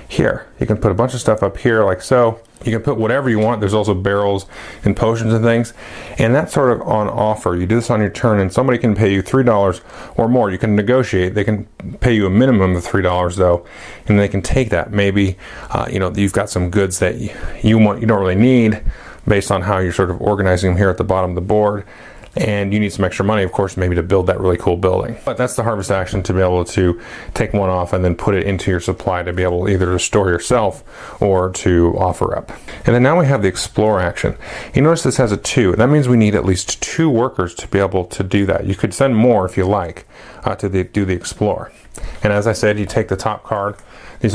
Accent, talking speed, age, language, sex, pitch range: American, 255 wpm, 30-49, English, male, 95-115 Hz